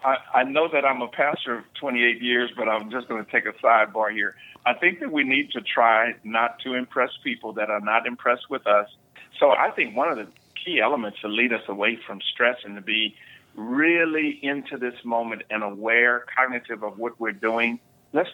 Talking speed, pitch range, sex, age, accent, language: 215 wpm, 115-140 Hz, male, 50-69, American, English